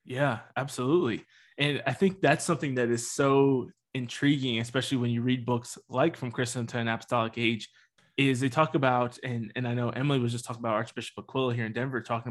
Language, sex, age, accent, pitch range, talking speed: English, male, 20-39, American, 120-145 Hz, 205 wpm